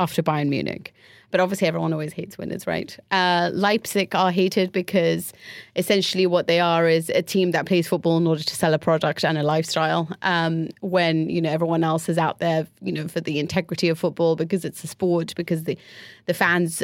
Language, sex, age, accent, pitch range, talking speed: English, female, 30-49, British, 165-185 Hz, 205 wpm